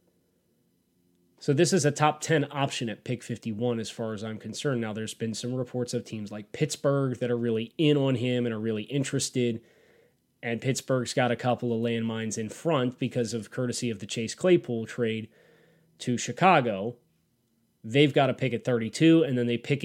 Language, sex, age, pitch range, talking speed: English, male, 30-49, 115-135 Hz, 190 wpm